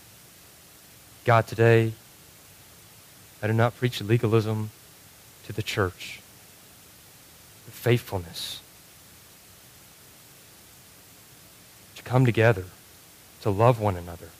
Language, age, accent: English, 30-49, American